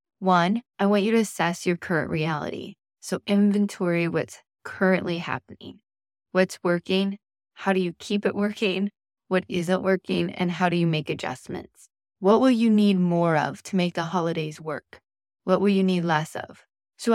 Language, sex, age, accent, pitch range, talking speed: English, female, 20-39, American, 175-205 Hz, 170 wpm